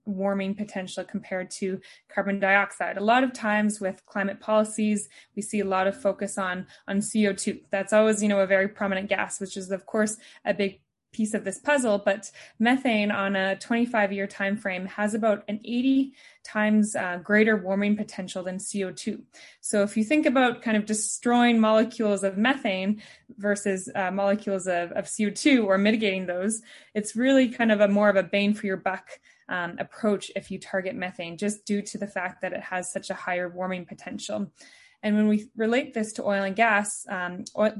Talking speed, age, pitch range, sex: 190 wpm, 20-39, 190-215 Hz, female